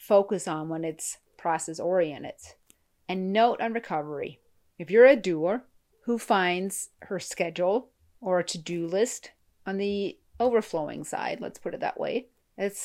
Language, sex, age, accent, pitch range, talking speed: English, female, 30-49, American, 160-210 Hz, 145 wpm